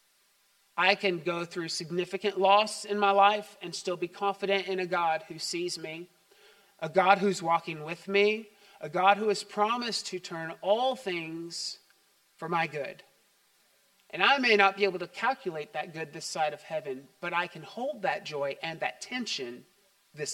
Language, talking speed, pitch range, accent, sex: English, 180 wpm, 175-200 Hz, American, male